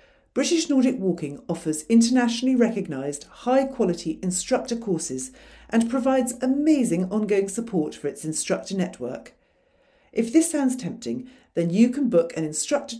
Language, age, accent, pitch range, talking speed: English, 50-69, British, 165-235 Hz, 130 wpm